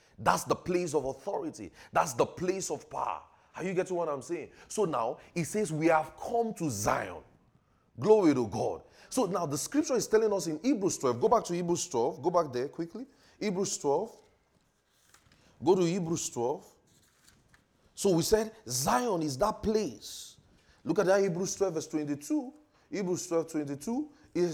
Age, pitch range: 30-49, 160-215 Hz